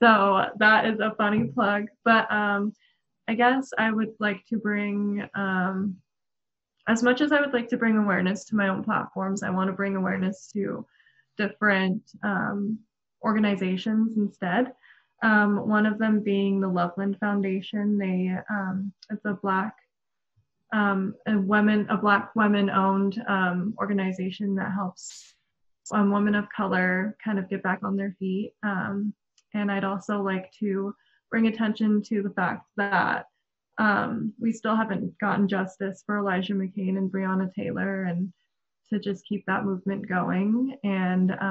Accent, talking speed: American, 150 wpm